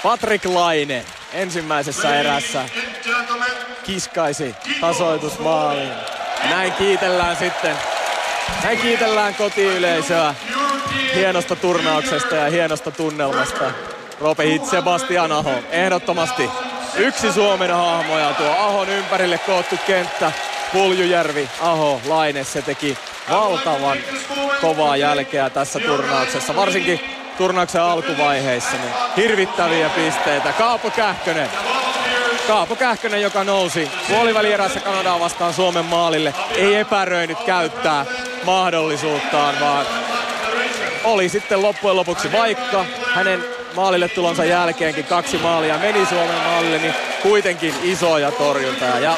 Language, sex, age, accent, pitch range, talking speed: Finnish, male, 30-49, native, 160-205 Hz, 100 wpm